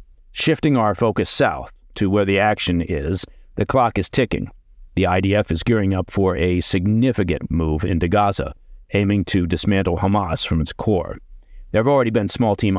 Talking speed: 175 wpm